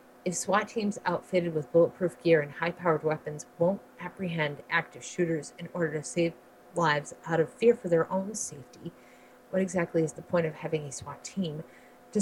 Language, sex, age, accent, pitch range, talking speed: English, female, 40-59, American, 150-180 Hz, 180 wpm